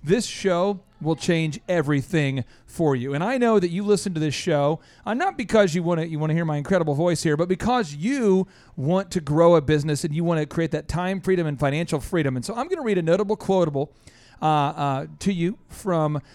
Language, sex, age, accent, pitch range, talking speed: English, male, 40-59, American, 150-195 Hz, 225 wpm